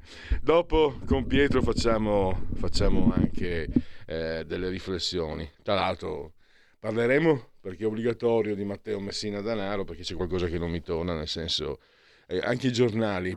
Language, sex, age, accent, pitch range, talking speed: Italian, male, 50-69, native, 95-115 Hz, 145 wpm